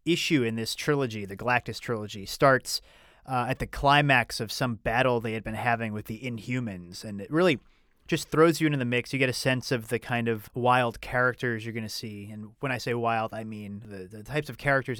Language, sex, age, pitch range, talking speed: English, male, 30-49, 115-140 Hz, 230 wpm